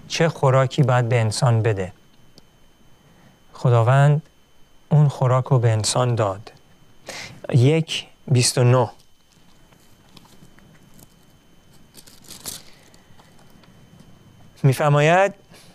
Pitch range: 125-160 Hz